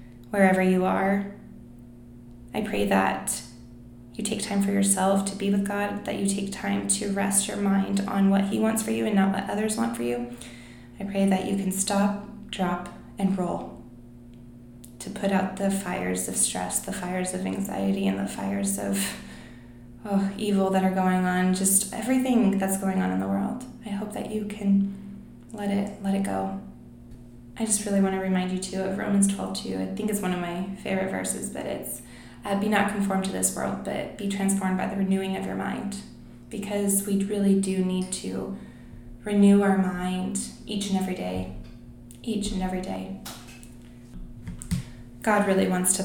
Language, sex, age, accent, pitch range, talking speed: English, female, 20-39, American, 120-200 Hz, 185 wpm